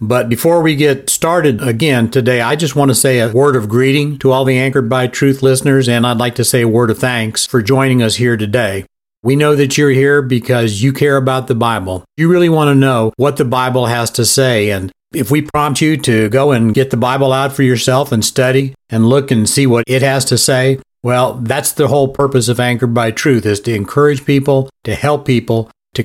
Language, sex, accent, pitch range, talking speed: English, male, American, 115-140 Hz, 235 wpm